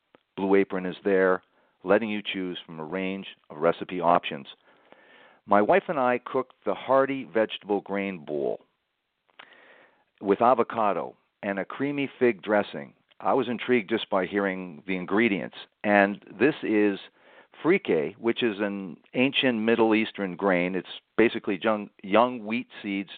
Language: English